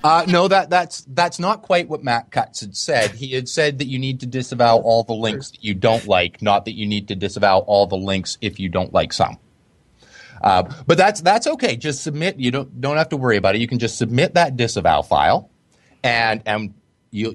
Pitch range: 110-150 Hz